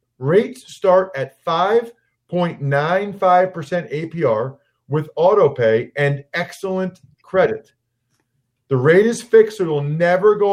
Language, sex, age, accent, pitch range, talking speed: English, male, 40-59, American, 120-185 Hz, 115 wpm